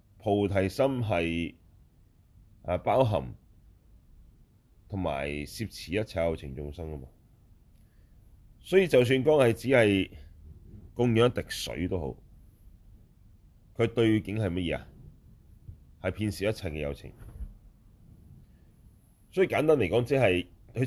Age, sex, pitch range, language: 30-49, male, 85-110 Hz, Chinese